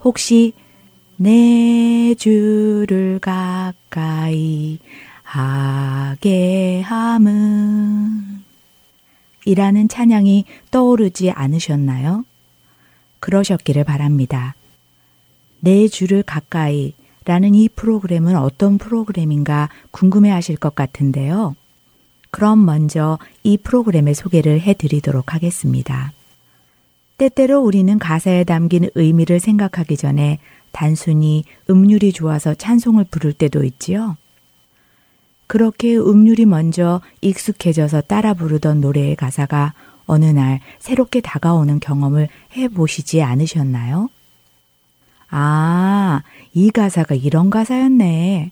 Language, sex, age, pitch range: Korean, female, 30-49, 145-205 Hz